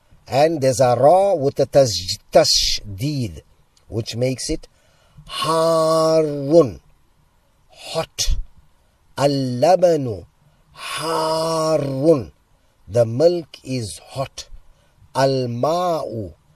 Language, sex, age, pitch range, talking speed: Arabic, male, 50-69, 115-160 Hz, 70 wpm